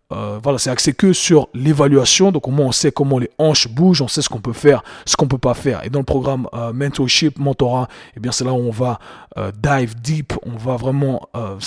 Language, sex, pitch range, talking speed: French, male, 125-150 Hz, 255 wpm